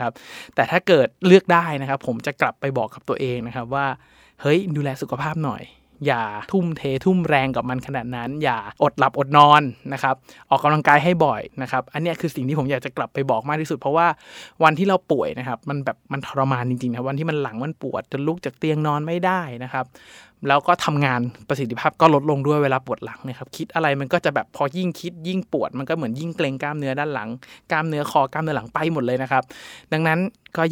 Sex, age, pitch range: male, 20-39, 125-155 Hz